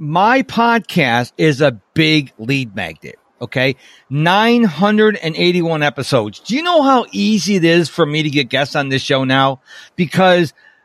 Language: English